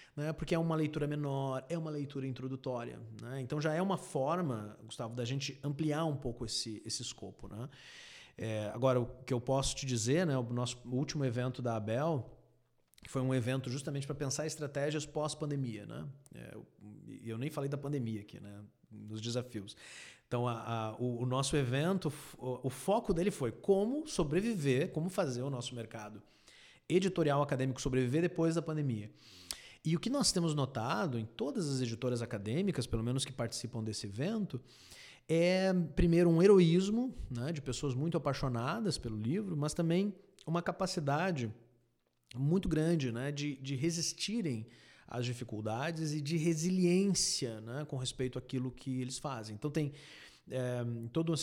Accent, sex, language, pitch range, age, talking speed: Brazilian, male, Portuguese, 120-160 Hz, 30-49, 165 wpm